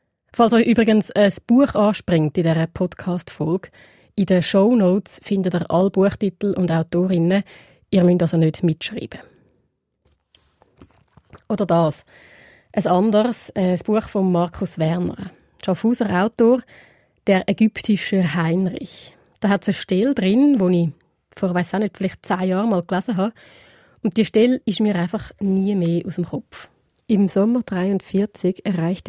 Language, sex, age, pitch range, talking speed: German, female, 20-39, 175-210 Hz, 145 wpm